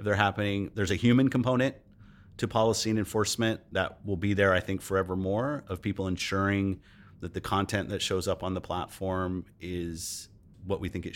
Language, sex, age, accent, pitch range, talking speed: English, male, 30-49, American, 90-105 Hz, 185 wpm